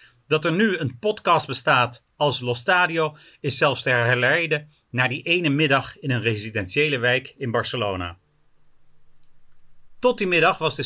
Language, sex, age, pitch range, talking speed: Dutch, male, 40-59, 130-170 Hz, 155 wpm